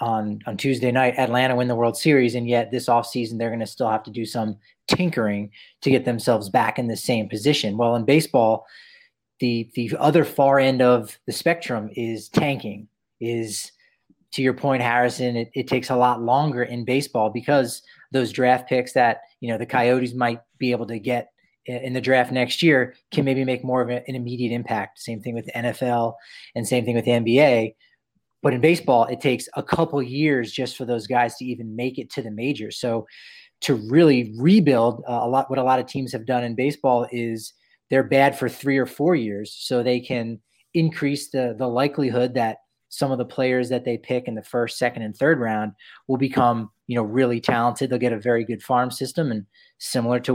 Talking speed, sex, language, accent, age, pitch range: 210 wpm, male, English, American, 30-49, 120-135 Hz